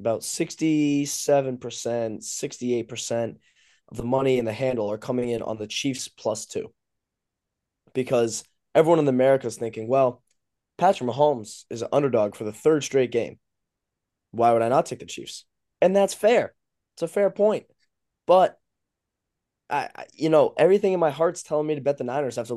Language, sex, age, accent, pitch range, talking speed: English, male, 10-29, American, 115-130 Hz, 170 wpm